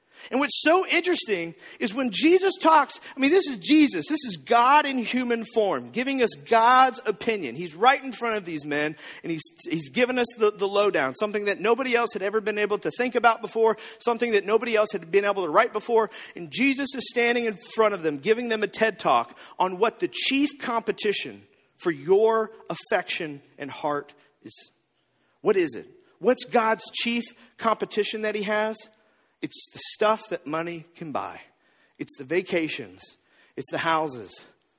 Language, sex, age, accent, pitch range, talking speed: English, male, 40-59, American, 200-265 Hz, 185 wpm